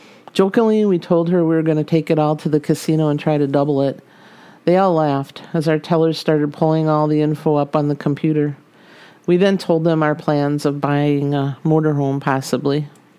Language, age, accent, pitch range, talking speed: English, 50-69, American, 145-165 Hz, 210 wpm